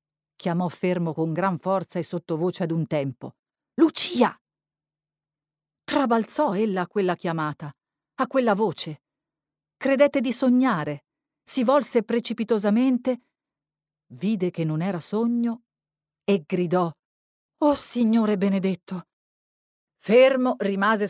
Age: 40-59